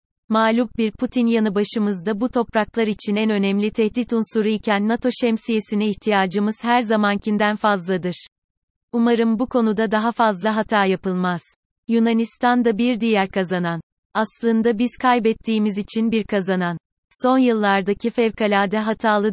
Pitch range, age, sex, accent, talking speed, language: 195-225 Hz, 30-49, female, native, 125 wpm, Turkish